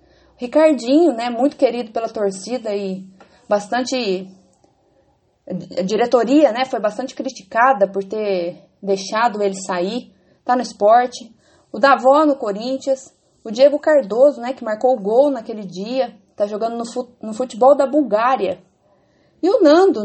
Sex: female